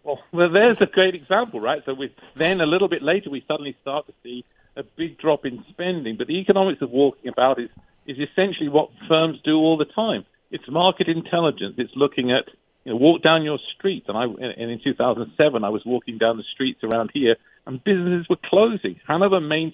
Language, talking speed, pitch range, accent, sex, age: English, 215 wpm, 125-160 Hz, British, male, 50-69